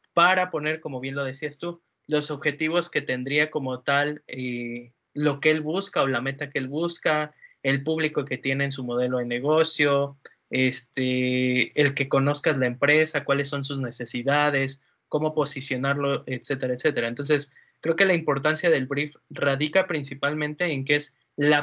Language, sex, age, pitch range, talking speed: Spanish, male, 20-39, 135-160 Hz, 165 wpm